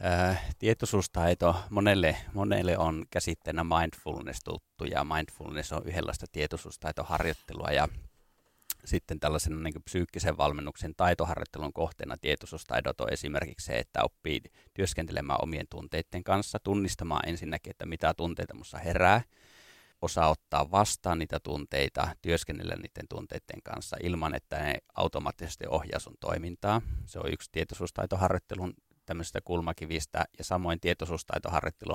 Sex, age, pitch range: male, 30-49, 80-95 Hz